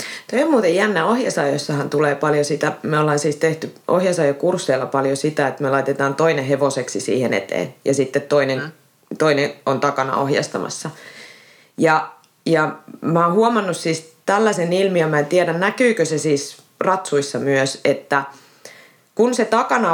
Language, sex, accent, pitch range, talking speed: Finnish, female, native, 140-185 Hz, 145 wpm